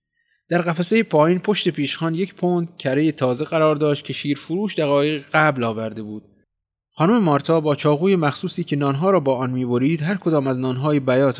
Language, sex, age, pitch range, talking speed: Persian, male, 20-39, 120-155 Hz, 180 wpm